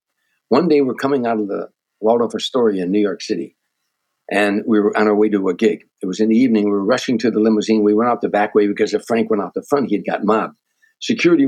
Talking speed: 260 wpm